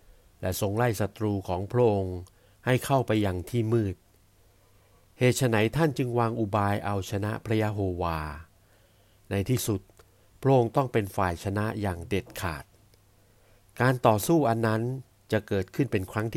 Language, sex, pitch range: Thai, male, 95-115 Hz